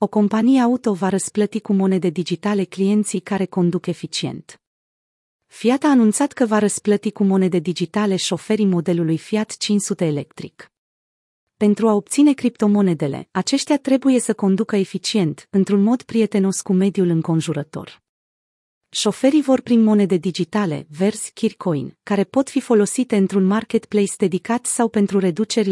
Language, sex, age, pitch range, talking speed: Romanian, female, 30-49, 180-220 Hz, 135 wpm